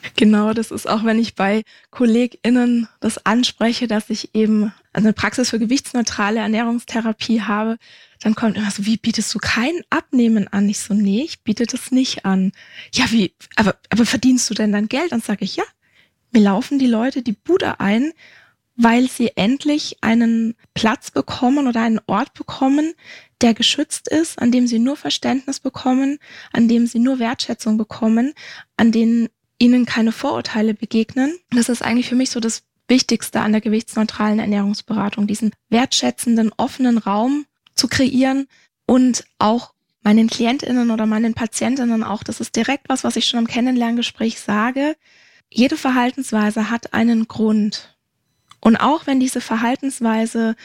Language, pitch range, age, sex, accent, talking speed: German, 220-250 Hz, 20-39, female, German, 160 wpm